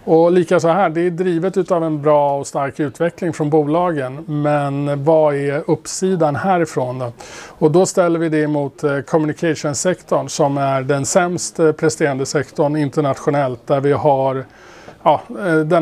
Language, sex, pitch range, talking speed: Swedish, male, 140-165 Hz, 150 wpm